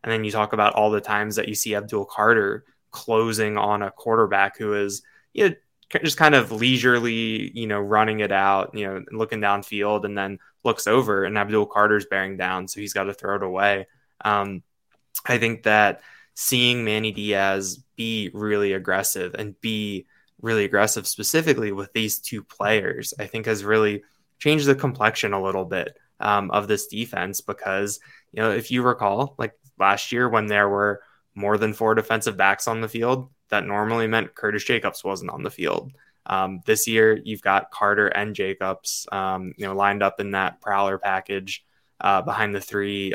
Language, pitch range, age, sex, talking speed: English, 100-110 Hz, 10-29, male, 185 wpm